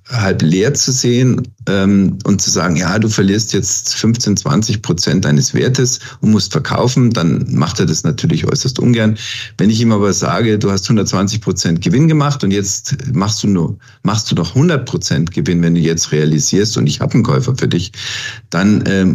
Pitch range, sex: 105-130 Hz, male